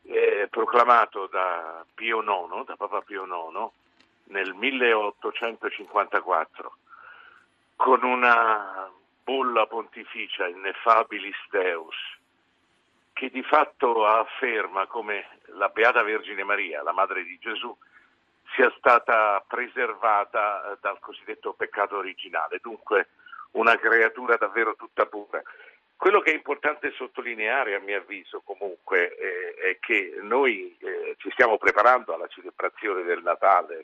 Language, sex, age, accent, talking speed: Italian, male, 50-69, native, 115 wpm